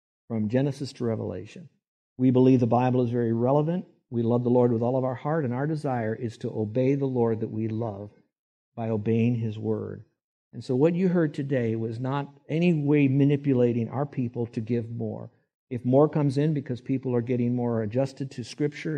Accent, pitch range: American, 115-135 Hz